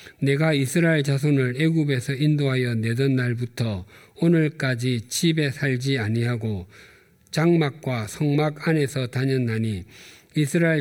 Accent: native